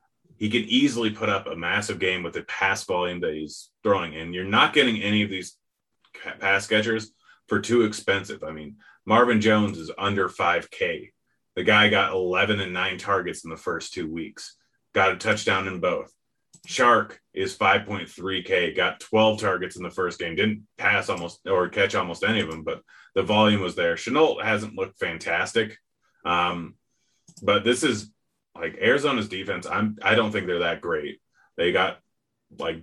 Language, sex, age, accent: English, male, 30-49, American